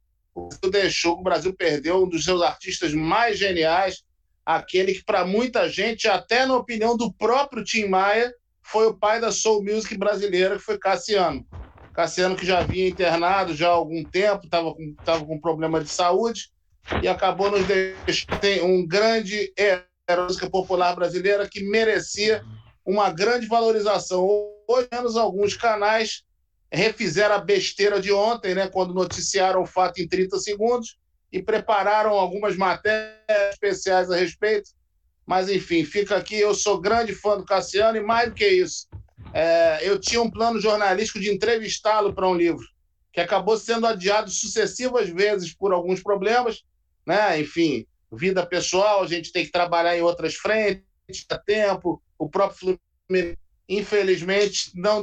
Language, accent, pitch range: Portuguese, Brazilian, 175-210 Hz